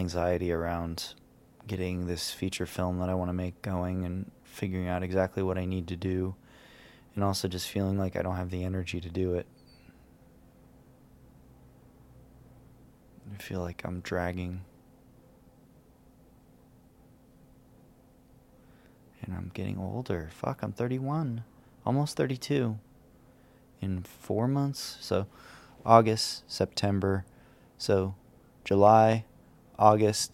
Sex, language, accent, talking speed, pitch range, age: male, English, American, 115 wpm, 95-120 Hz, 20-39